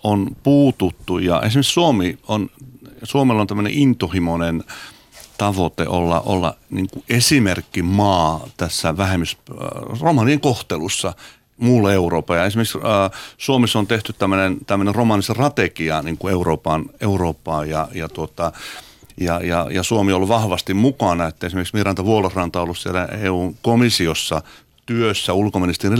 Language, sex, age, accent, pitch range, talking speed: Finnish, male, 50-69, native, 85-110 Hz, 120 wpm